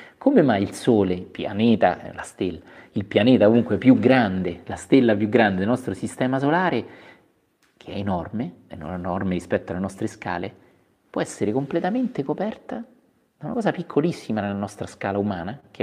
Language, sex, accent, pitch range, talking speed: Italian, male, native, 95-130 Hz, 165 wpm